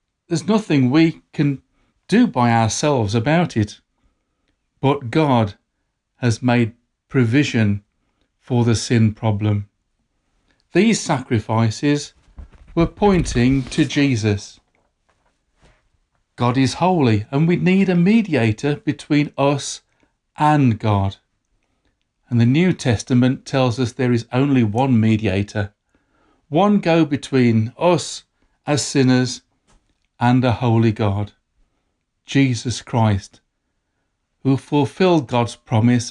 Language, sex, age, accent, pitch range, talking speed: English, male, 40-59, British, 110-140 Hz, 105 wpm